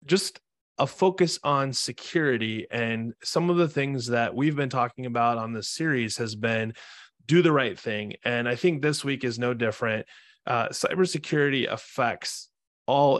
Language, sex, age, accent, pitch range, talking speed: English, male, 20-39, American, 115-140 Hz, 165 wpm